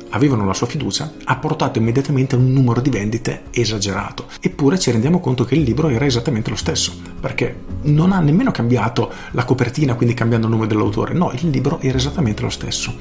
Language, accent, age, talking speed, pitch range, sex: Italian, native, 40-59, 200 wpm, 100-130 Hz, male